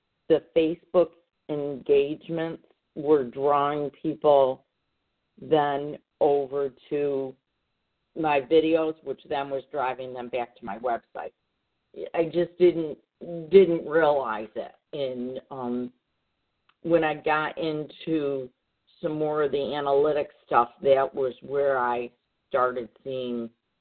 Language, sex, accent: English, female, American